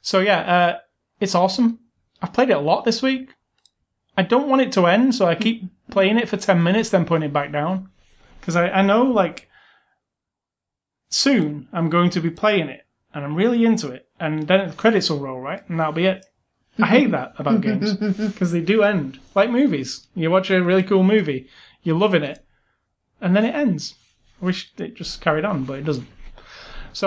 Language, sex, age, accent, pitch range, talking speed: English, male, 30-49, British, 155-195 Hz, 205 wpm